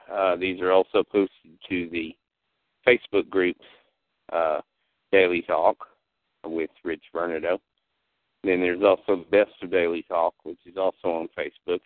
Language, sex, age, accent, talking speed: English, male, 50-69, American, 140 wpm